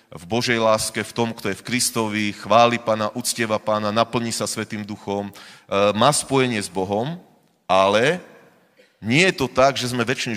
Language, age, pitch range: Slovak, 30-49, 110-135 Hz